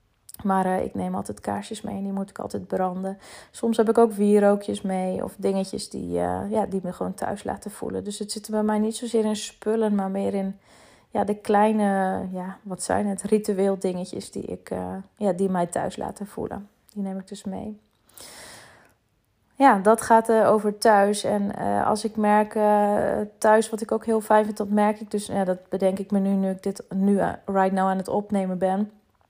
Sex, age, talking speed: female, 30-49, 215 wpm